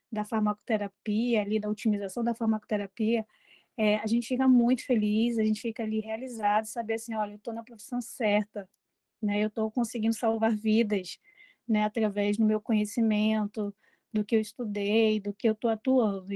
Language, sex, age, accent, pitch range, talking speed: Portuguese, female, 20-39, Brazilian, 215-245 Hz, 170 wpm